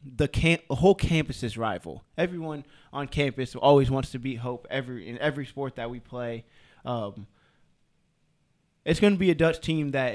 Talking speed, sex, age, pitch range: 185 wpm, male, 20-39, 120-150 Hz